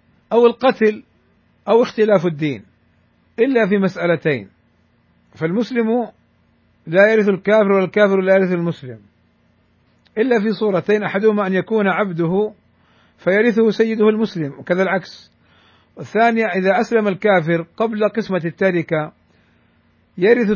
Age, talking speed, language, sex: 50-69, 105 wpm, Arabic, male